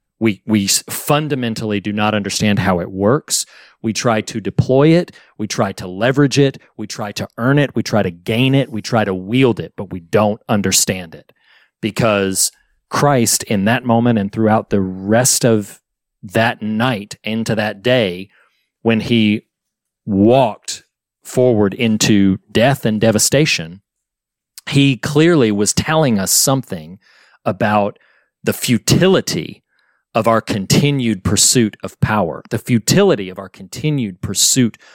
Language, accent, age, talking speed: English, American, 40-59, 145 wpm